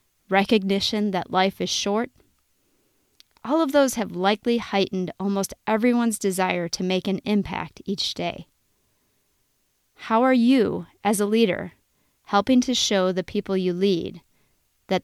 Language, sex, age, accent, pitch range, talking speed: English, female, 20-39, American, 185-230 Hz, 135 wpm